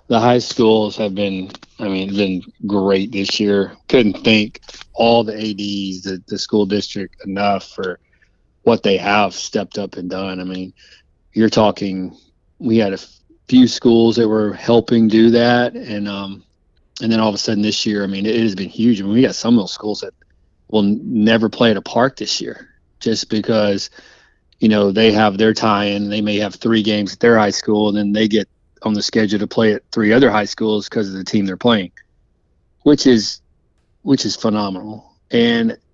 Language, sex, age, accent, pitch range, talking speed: English, male, 30-49, American, 100-115 Hz, 200 wpm